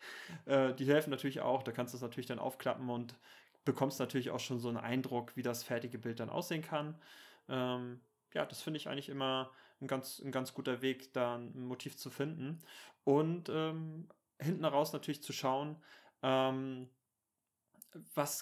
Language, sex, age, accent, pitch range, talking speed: German, male, 30-49, German, 125-140 Hz, 170 wpm